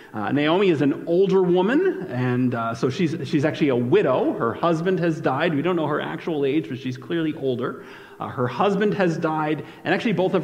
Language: English